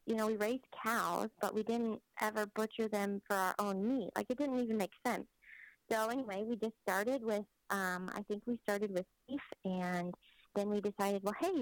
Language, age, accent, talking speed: English, 30-49, American, 205 wpm